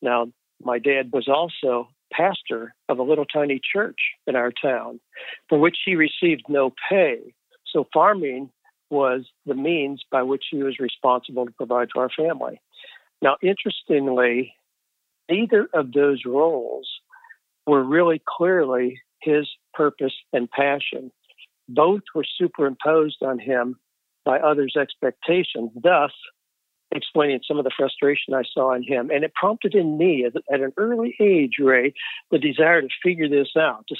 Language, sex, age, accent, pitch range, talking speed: English, male, 60-79, American, 130-165 Hz, 145 wpm